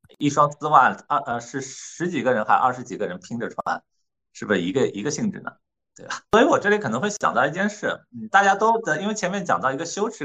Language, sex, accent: Chinese, male, native